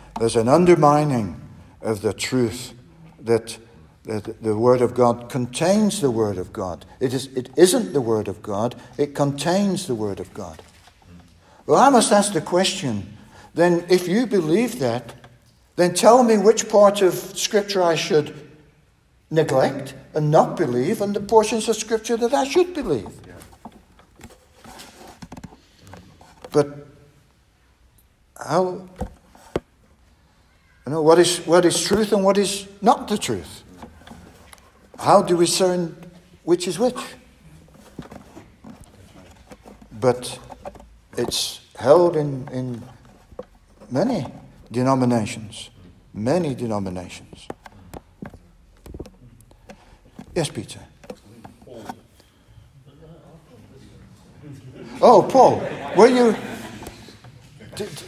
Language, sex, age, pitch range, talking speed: English, male, 60-79, 115-185 Hz, 105 wpm